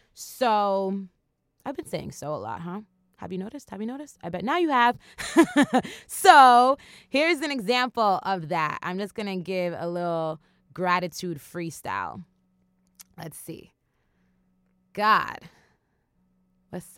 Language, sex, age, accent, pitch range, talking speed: English, female, 20-39, American, 150-185 Hz, 135 wpm